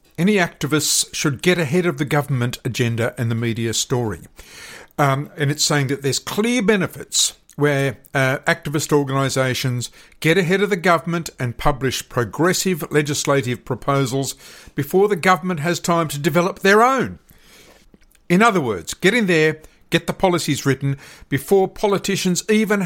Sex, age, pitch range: male, 50-69, 135-180 Hz